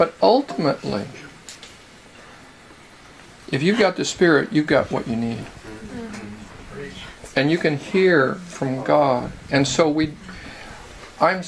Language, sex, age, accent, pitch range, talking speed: English, male, 50-69, American, 140-170 Hz, 115 wpm